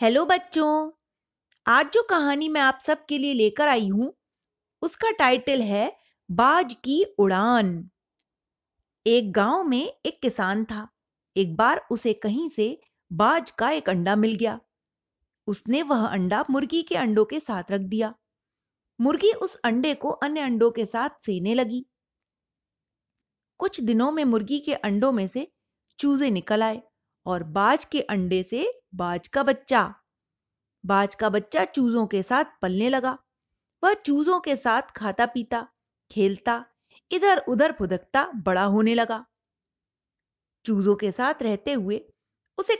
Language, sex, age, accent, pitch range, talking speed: Hindi, female, 30-49, native, 215-295 Hz, 140 wpm